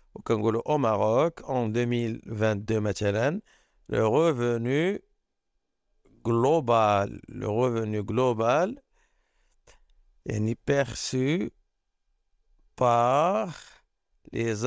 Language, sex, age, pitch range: Arabic, male, 50-69, 115-160 Hz